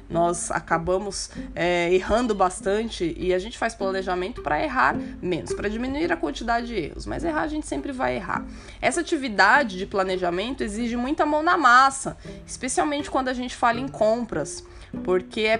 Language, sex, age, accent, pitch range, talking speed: Portuguese, female, 20-39, Brazilian, 190-260 Hz, 170 wpm